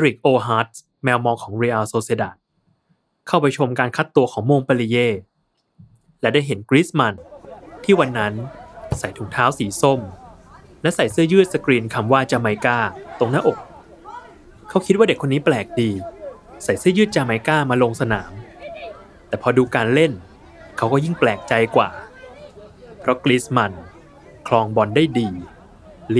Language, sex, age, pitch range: Thai, male, 20-39, 110-145 Hz